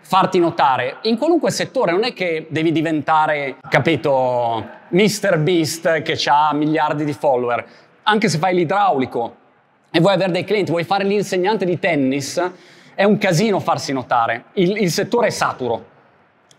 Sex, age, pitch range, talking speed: male, 30-49, 155-200 Hz, 150 wpm